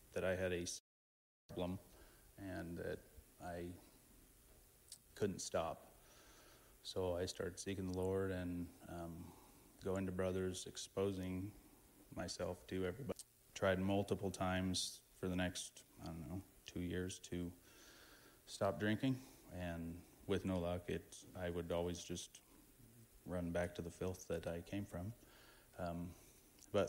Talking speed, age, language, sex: 130 wpm, 30-49, English, male